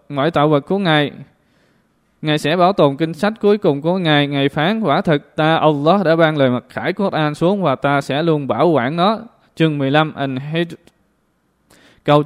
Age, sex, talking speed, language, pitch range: 20-39, male, 190 wpm, Vietnamese, 145-175 Hz